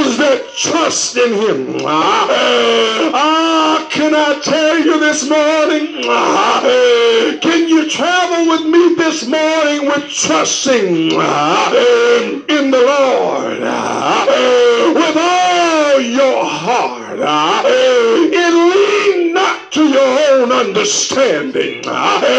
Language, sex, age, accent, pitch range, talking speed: English, male, 50-69, American, 280-345 Hz, 90 wpm